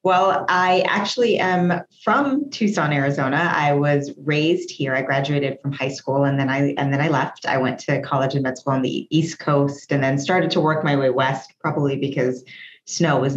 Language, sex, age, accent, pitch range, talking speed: English, female, 20-39, American, 135-165 Hz, 205 wpm